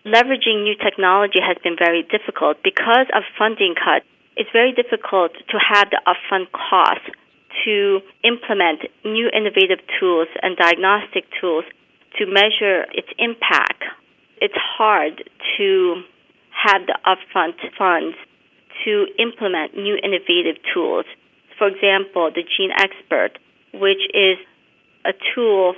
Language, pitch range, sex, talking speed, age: English, 185-230 Hz, female, 120 wpm, 40-59